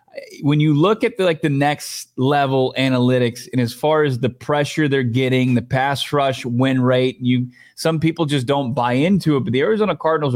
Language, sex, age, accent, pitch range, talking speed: English, male, 30-49, American, 125-155 Hz, 195 wpm